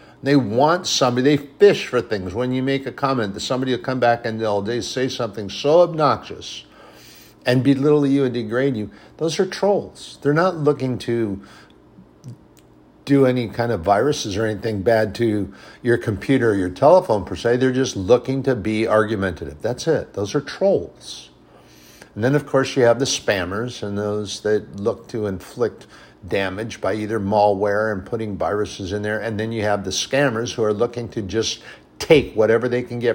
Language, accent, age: English, American, 60-79